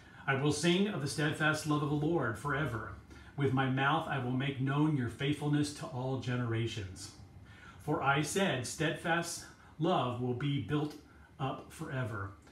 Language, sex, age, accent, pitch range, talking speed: English, male, 40-59, American, 115-150 Hz, 160 wpm